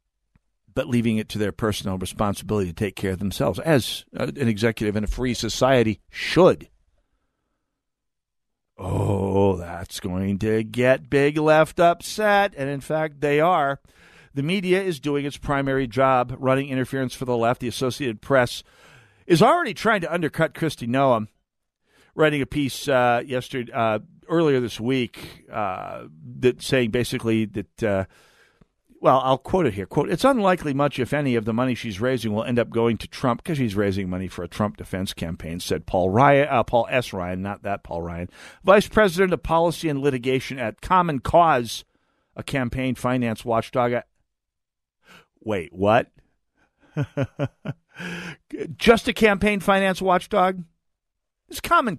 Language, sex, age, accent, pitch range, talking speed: English, male, 50-69, American, 110-150 Hz, 155 wpm